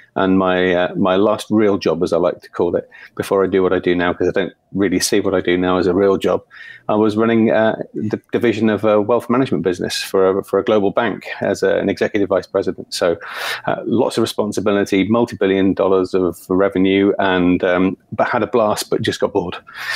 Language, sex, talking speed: English, male, 225 wpm